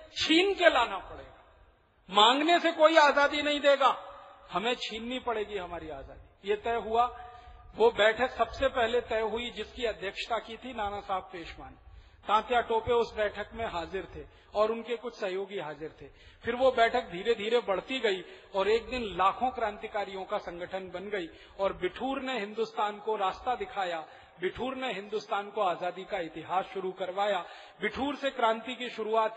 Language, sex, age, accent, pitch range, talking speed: Hindi, male, 40-59, native, 200-260 Hz, 165 wpm